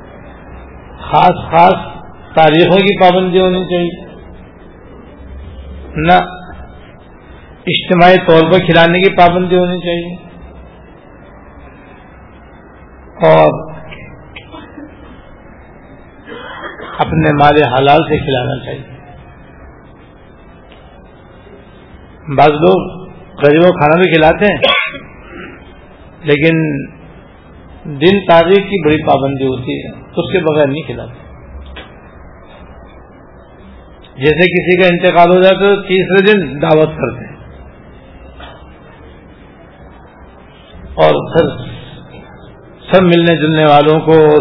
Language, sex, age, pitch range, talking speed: Urdu, male, 60-79, 135-175 Hz, 85 wpm